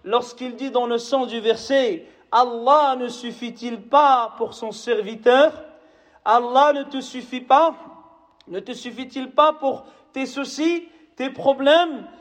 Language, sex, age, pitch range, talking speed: French, male, 40-59, 260-320 Hz, 140 wpm